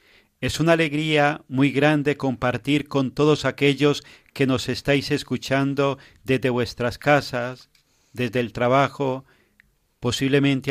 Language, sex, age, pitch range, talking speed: Spanish, male, 40-59, 130-150 Hz, 110 wpm